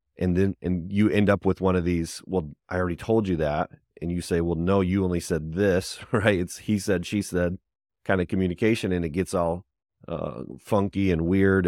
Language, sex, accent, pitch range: English, male, American, 85-95 Hz